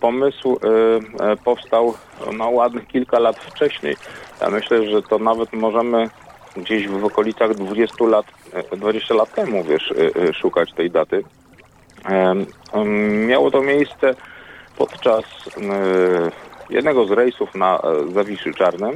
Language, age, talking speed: Polish, 40-59, 130 wpm